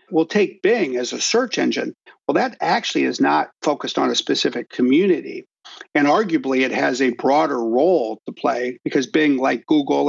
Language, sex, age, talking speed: English, male, 50-69, 180 wpm